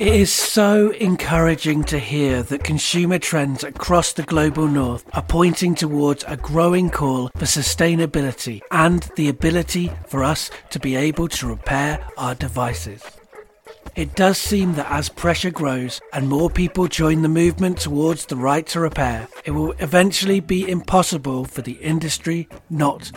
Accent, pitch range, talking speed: British, 135-175 Hz, 155 wpm